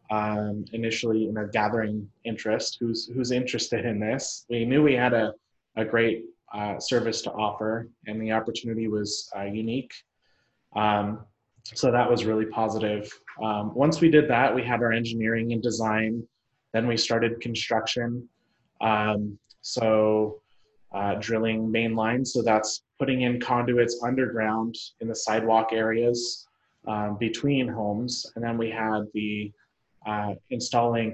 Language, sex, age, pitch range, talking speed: English, male, 20-39, 110-120 Hz, 145 wpm